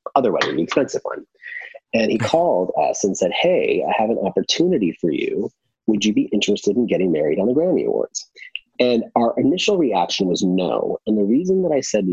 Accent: American